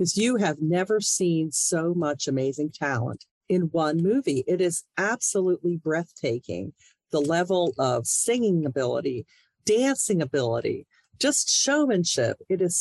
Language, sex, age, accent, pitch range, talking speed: English, female, 50-69, American, 155-210 Hz, 120 wpm